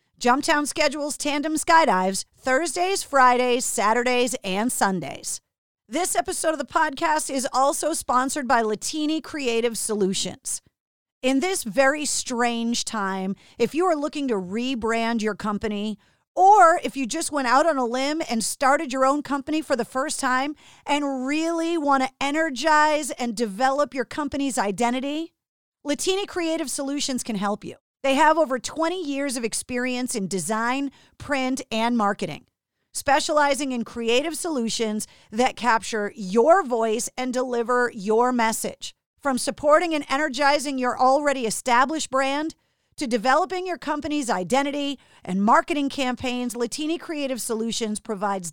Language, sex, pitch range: English, female, 230-295 Hz